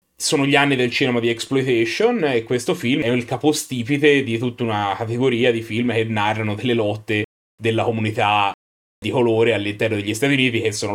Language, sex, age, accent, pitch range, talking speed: Italian, male, 30-49, native, 115-145 Hz, 180 wpm